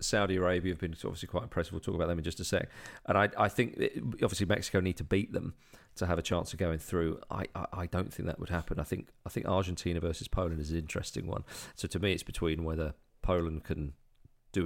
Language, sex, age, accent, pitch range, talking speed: English, male, 40-59, British, 85-105 Hz, 250 wpm